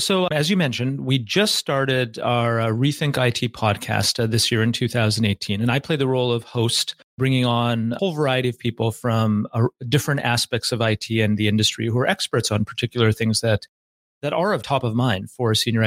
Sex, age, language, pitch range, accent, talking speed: male, 40-59, English, 110-145 Hz, American, 210 wpm